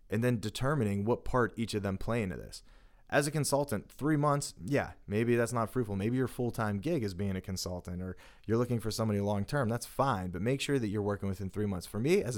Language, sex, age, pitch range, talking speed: English, male, 30-49, 95-120 Hz, 240 wpm